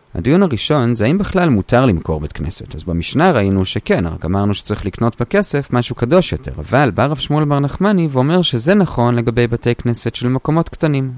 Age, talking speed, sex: 30-49, 185 wpm, male